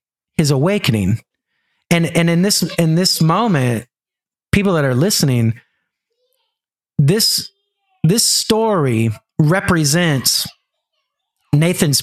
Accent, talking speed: American, 90 wpm